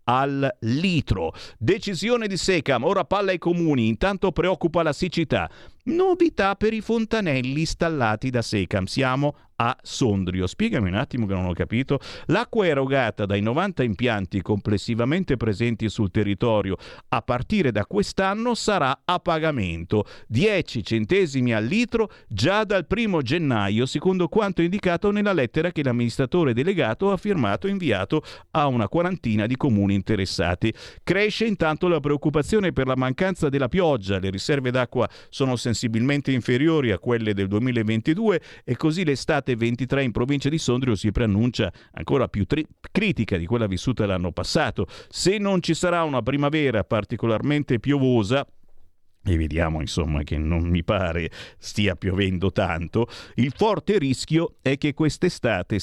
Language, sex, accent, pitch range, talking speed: Italian, male, native, 105-160 Hz, 145 wpm